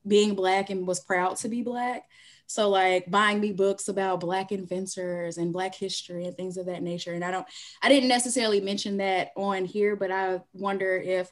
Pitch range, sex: 180-210 Hz, female